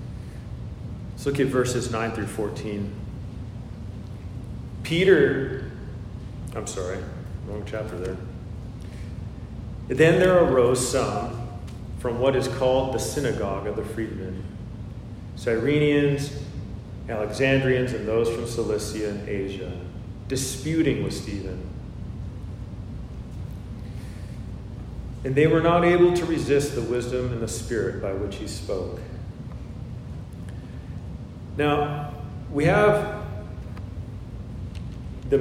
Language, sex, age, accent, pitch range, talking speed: English, male, 40-59, American, 105-130 Hz, 95 wpm